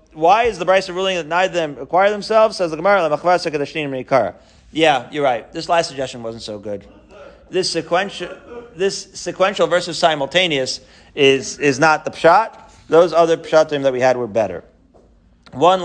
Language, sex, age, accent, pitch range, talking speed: English, male, 40-59, American, 145-185 Hz, 155 wpm